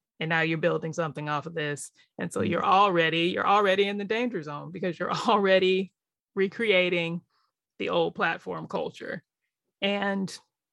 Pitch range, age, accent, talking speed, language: 180-255 Hz, 20-39, American, 145 wpm, English